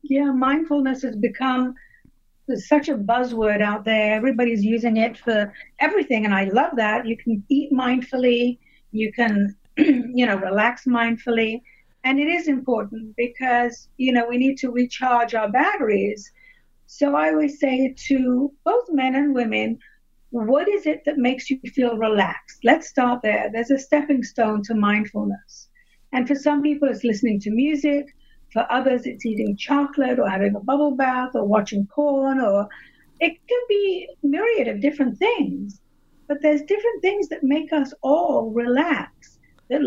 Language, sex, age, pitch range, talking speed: English, female, 50-69, 225-280 Hz, 160 wpm